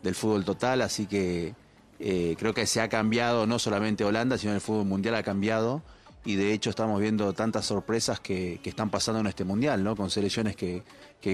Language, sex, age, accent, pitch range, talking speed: Spanish, male, 30-49, Argentinian, 100-115 Hz, 200 wpm